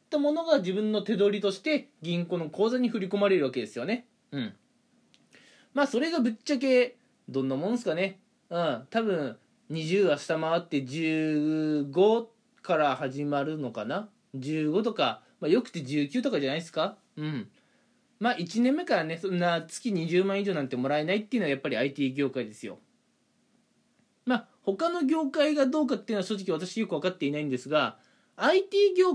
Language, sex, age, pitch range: Japanese, male, 20-39, 150-235 Hz